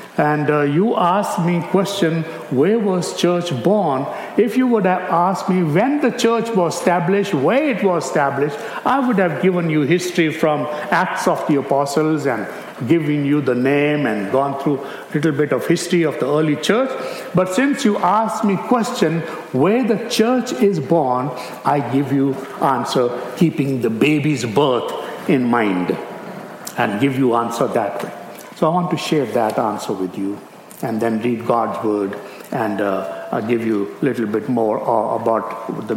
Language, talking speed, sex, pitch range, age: English, 175 wpm, male, 135-195 Hz, 60-79